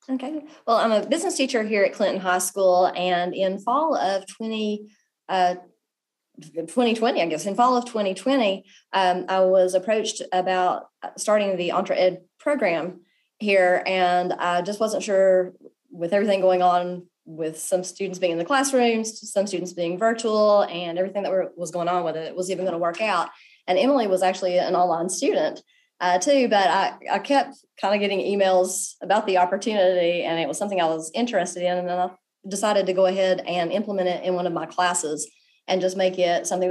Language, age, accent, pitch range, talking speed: English, 30-49, American, 180-215 Hz, 195 wpm